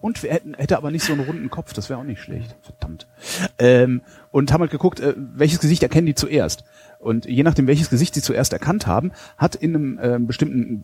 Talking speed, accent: 205 wpm, German